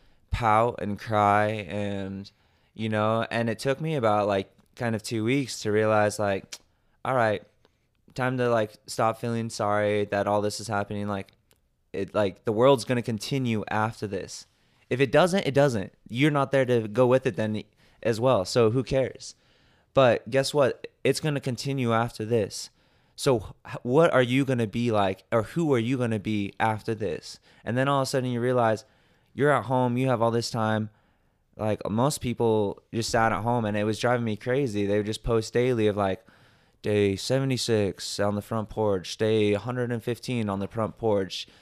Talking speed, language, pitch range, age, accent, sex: 195 wpm, English, 105-125 Hz, 20-39, American, male